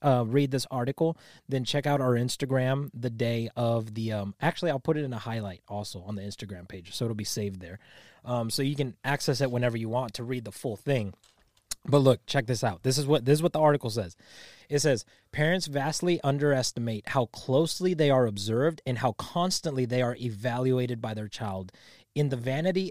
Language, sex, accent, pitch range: English, male, American, 115-145 Hz